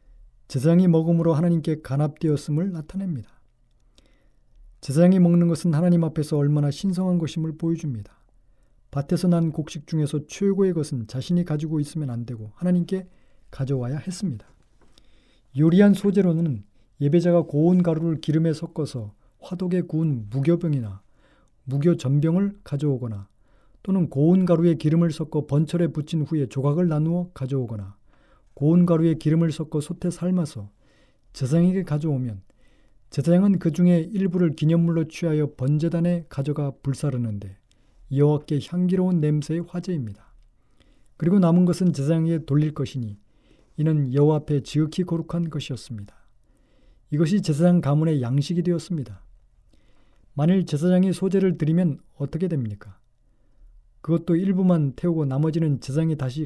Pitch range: 140-175 Hz